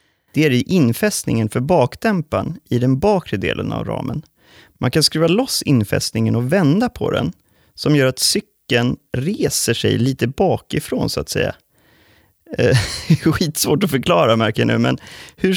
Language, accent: Swedish, native